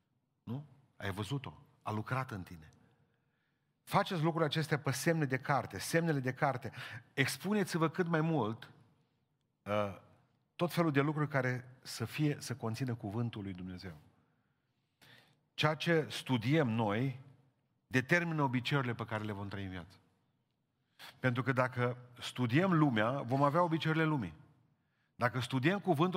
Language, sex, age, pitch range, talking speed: Romanian, male, 40-59, 120-150 Hz, 135 wpm